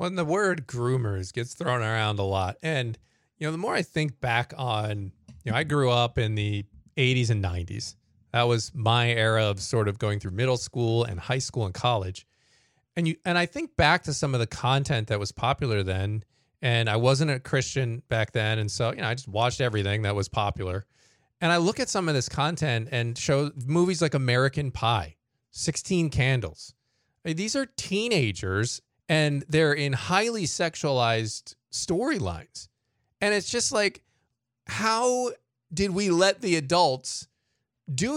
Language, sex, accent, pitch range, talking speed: English, male, American, 115-165 Hz, 180 wpm